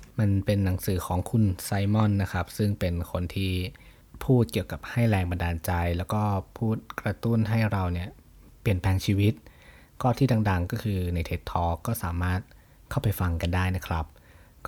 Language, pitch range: Thai, 90-110 Hz